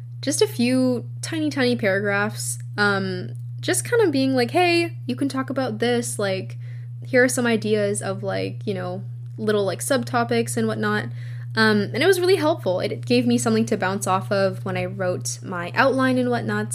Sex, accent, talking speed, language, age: female, American, 190 wpm, English, 10-29